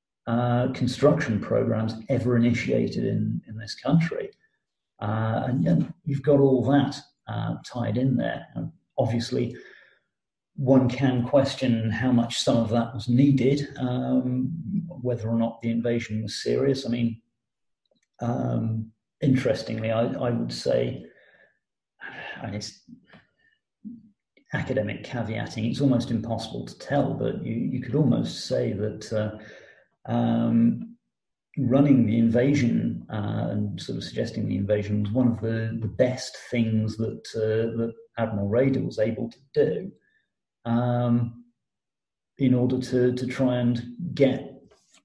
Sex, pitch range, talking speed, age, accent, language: male, 115-135 Hz, 130 wpm, 40-59, British, English